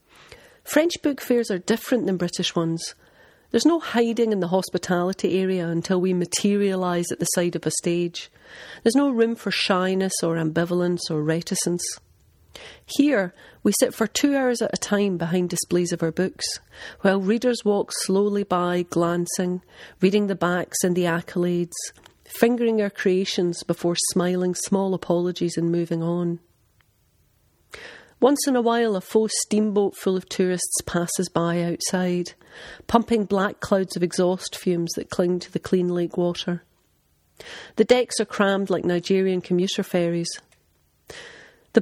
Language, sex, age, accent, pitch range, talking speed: English, female, 40-59, British, 175-205 Hz, 150 wpm